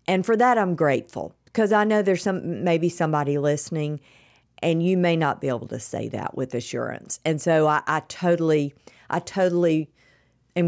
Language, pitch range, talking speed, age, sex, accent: English, 135-170 Hz, 180 wpm, 50-69, female, American